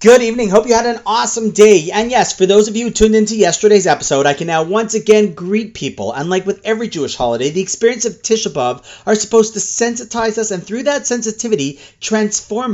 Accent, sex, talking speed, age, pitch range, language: American, male, 220 wpm, 40-59, 155-220 Hz, English